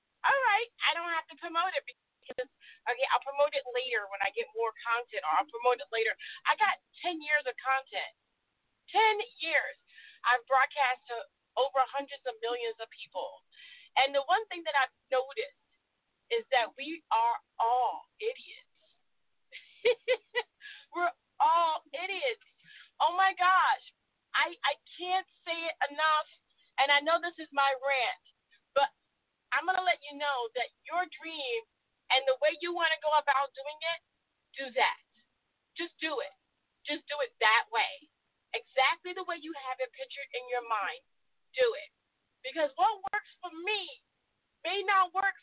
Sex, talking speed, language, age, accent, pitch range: female, 155 wpm, English, 40-59, American, 255-390 Hz